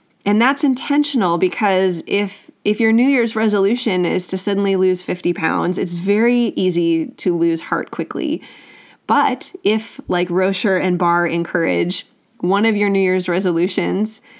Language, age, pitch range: English, 30-49, 180-230 Hz